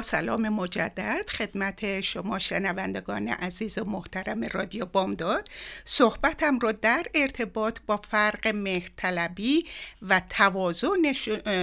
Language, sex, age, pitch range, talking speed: Persian, female, 60-79, 180-250 Hz, 100 wpm